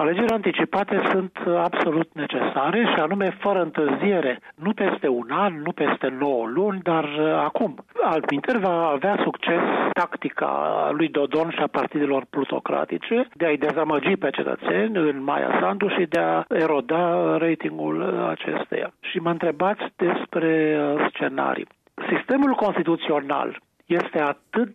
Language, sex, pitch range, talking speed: Romanian, male, 150-200 Hz, 130 wpm